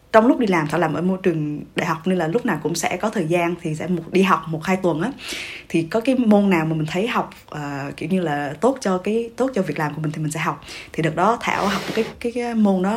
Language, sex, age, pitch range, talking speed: Vietnamese, female, 20-39, 165-230 Hz, 300 wpm